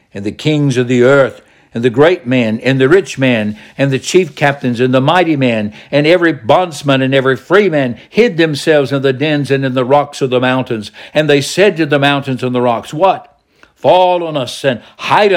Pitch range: 120-150 Hz